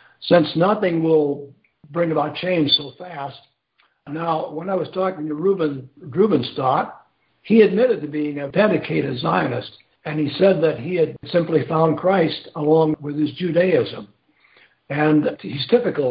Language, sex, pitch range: English, male, 140-165 Hz